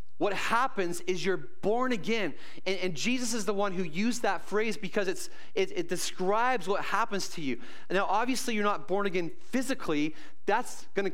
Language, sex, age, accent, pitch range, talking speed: English, male, 30-49, American, 150-210 Hz, 190 wpm